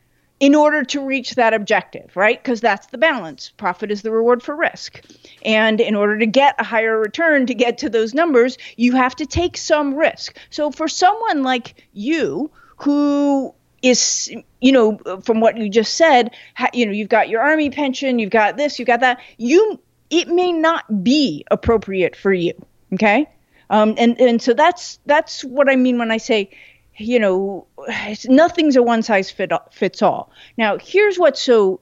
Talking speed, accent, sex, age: 175 wpm, American, female, 40-59